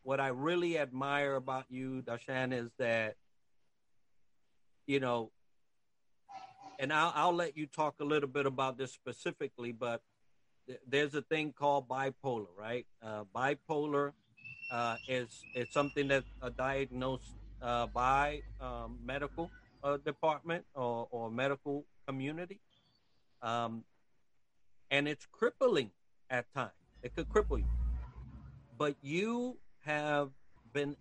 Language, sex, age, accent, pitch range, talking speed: English, male, 50-69, American, 120-150 Hz, 120 wpm